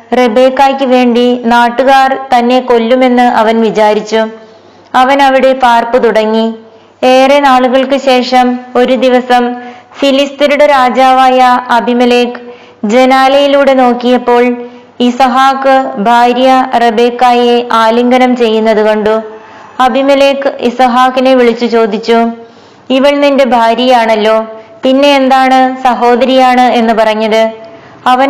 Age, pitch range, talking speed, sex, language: 20-39, 235-260 Hz, 85 wpm, female, Malayalam